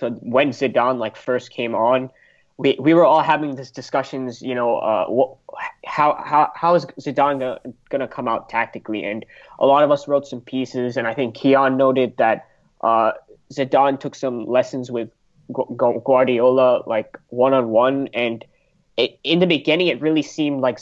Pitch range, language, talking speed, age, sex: 130-155 Hz, English, 185 wpm, 20-39, male